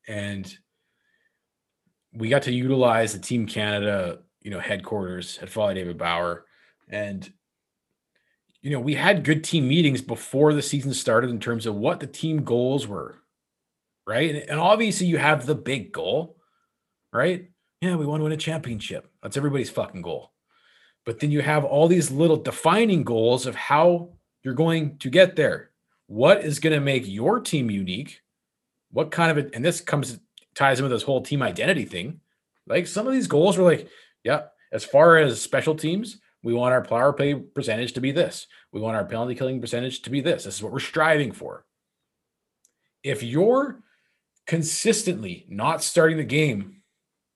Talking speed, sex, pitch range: 175 wpm, male, 120-165 Hz